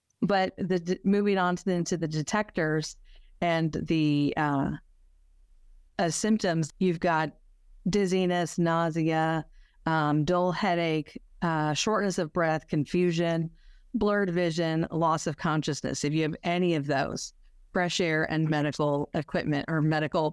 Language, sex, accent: English, female, American